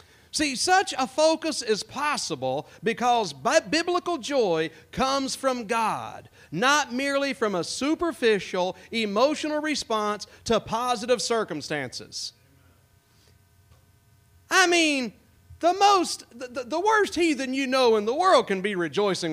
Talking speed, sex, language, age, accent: 115 wpm, male, English, 40-59, American